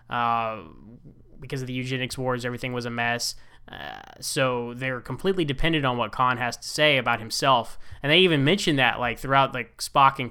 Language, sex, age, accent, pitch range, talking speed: English, male, 10-29, American, 120-160 Hz, 190 wpm